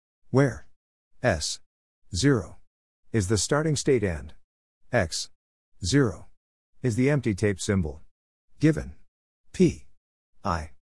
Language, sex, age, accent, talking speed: English, male, 60-79, American, 100 wpm